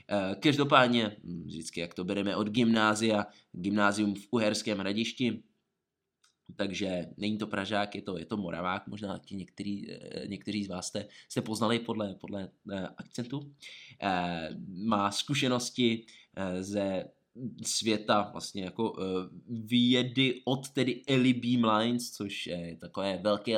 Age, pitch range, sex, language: 20-39, 100-120 Hz, male, Czech